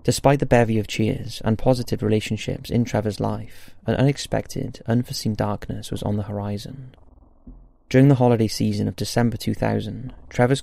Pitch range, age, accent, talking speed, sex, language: 100-125 Hz, 20-39, British, 150 wpm, male, English